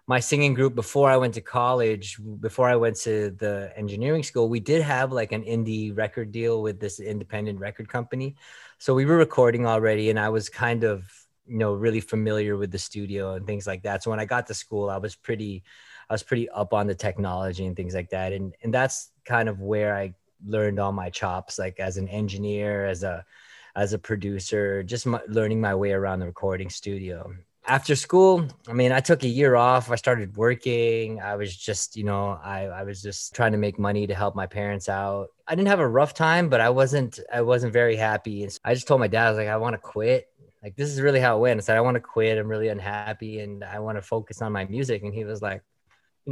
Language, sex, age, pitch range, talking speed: English, male, 20-39, 100-120 Hz, 240 wpm